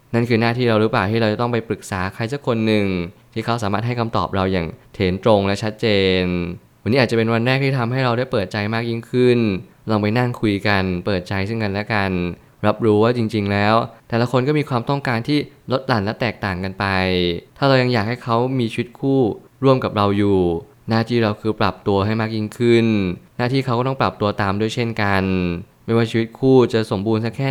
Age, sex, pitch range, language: 20-39, male, 100-120 Hz, Thai